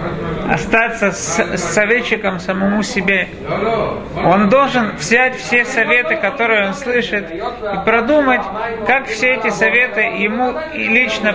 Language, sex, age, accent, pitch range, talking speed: Russian, male, 40-59, native, 180-235 Hz, 110 wpm